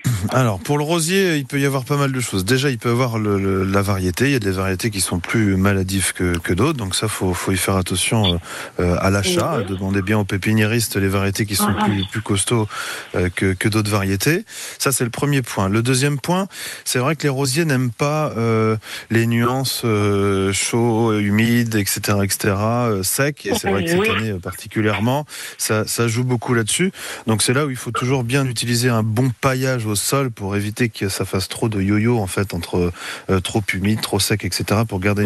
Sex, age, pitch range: male, 30-49, 100-125 Hz